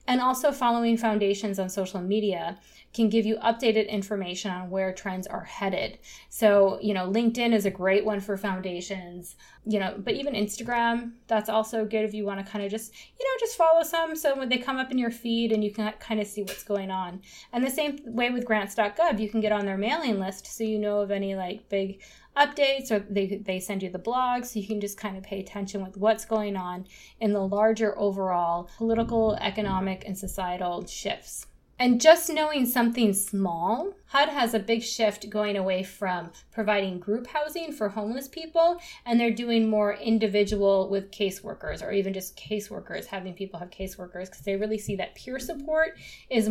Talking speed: 200 wpm